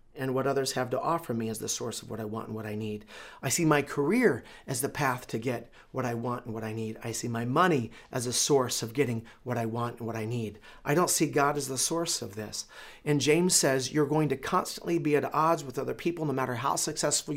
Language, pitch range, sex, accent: English, 120-150 Hz, male, American